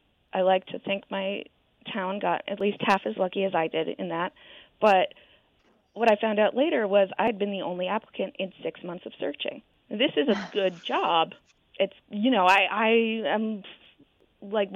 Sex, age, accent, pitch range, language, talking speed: female, 30-49, American, 180-210 Hz, English, 190 wpm